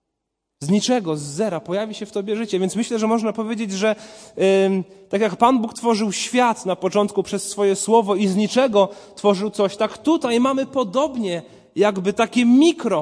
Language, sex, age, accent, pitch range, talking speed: Polish, male, 30-49, native, 140-210 Hz, 180 wpm